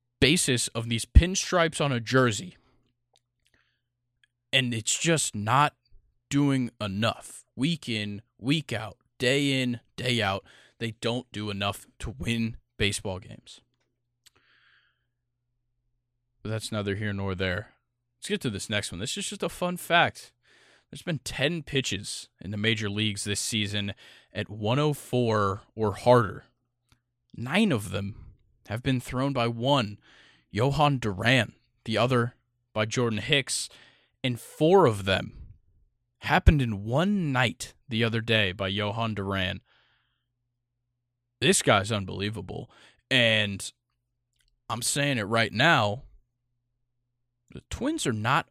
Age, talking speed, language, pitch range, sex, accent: 20-39, 125 wpm, English, 110-130 Hz, male, American